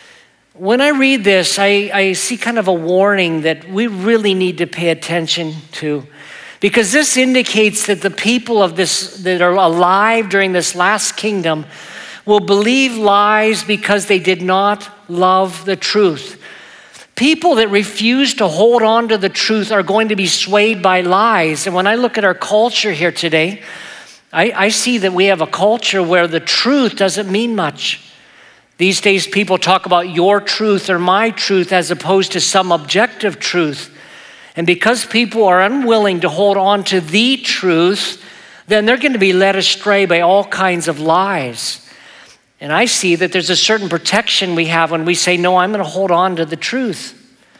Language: English